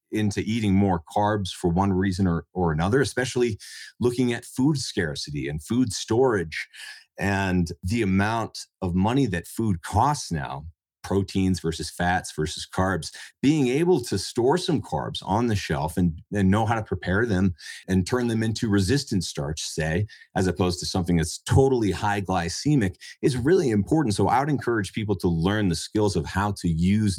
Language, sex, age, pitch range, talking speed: English, male, 40-59, 85-105 Hz, 175 wpm